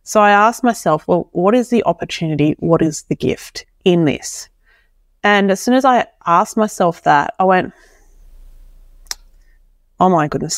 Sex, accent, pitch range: female, Australian, 160-205 Hz